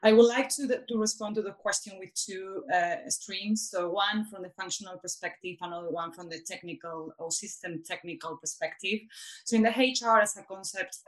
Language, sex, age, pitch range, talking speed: English, female, 30-49, 170-205 Hz, 195 wpm